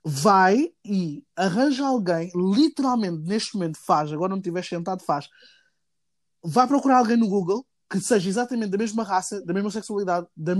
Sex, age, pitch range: male, 20-39, 180-220 Hz